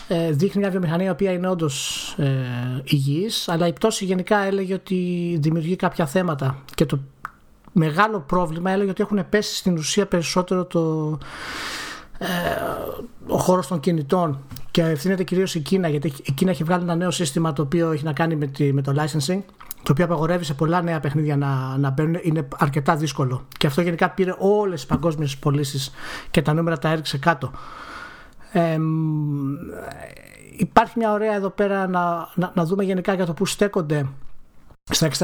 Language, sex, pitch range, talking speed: Greek, male, 155-190 Hz, 170 wpm